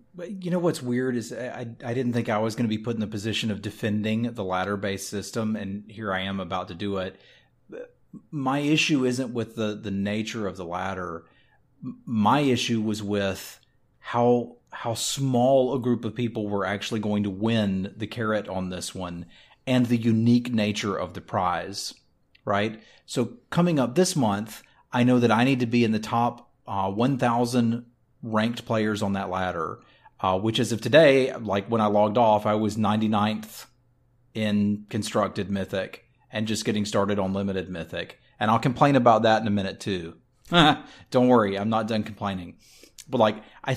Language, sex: English, male